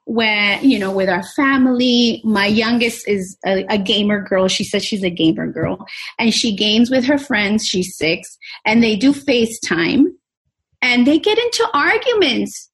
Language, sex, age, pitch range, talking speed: English, female, 30-49, 225-315 Hz, 170 wpm